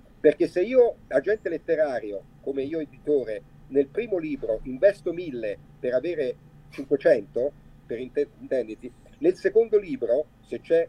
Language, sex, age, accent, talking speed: Italian, male, 50-69, native, 115 wpm